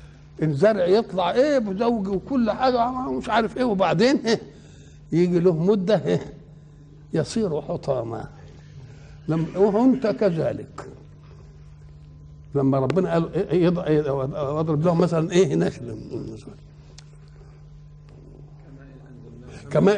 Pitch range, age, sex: 145-195 Hz, 60-79, male